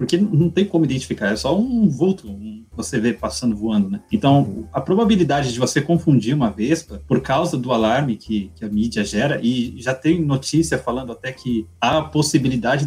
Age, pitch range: 20-39, 120-165 Hz